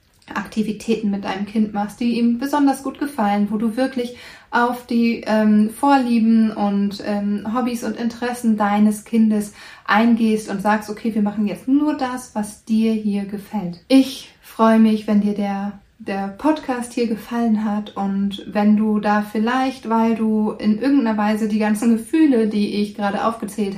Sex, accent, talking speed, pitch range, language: female, German, 165 wpm, 205-230 Hz, German